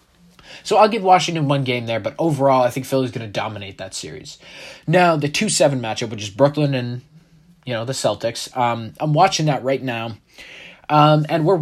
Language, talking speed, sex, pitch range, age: English, 190 wpm, male, 125-165 Hz, 20-39